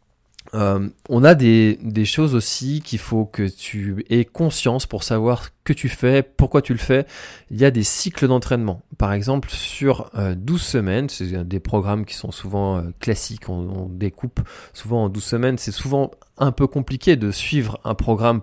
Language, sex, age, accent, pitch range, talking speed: French, male, 20-39, French, 100-125 Hz, 180 wpm